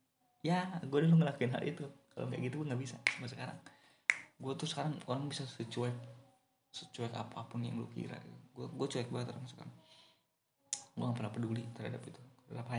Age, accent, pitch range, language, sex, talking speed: 20-39, native, 115-140 Hz, Indonesian, male, 165 wpm